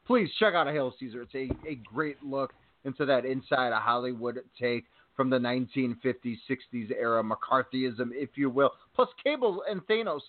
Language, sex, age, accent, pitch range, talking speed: English, male, 30-49, American, 125-165 Hz, 175 wpm